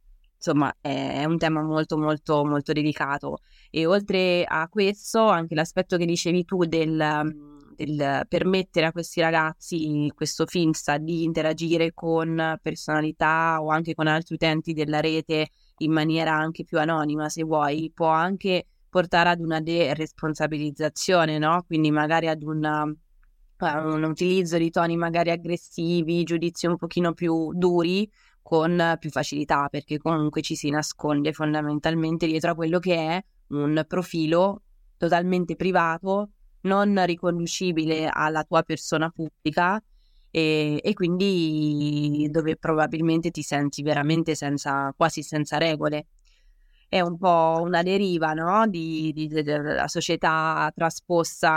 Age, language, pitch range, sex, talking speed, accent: 20-39, Italian, 155-170 Hz, female, 135 wpm, native